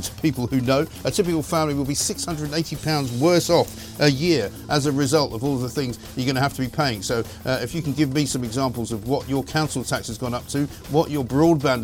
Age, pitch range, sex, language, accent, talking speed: 50-69, 120-150 Hz, male, English, British, 250 wpm